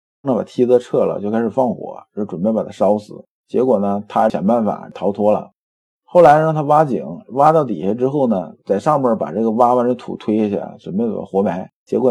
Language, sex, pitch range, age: Chinese, male, 105-150 Hz, 50-69